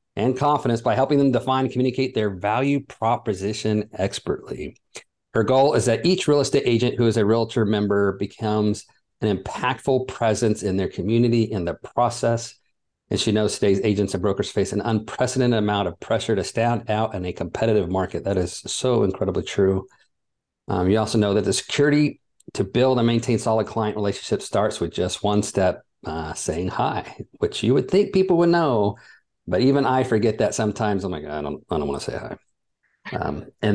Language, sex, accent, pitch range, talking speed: English, male, American, 105-130 Hz, 190 wpm